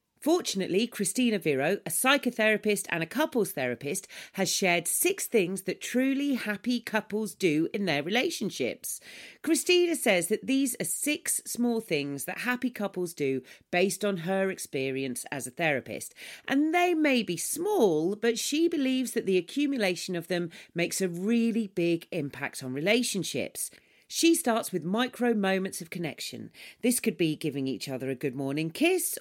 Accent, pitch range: British, 165-245 Hz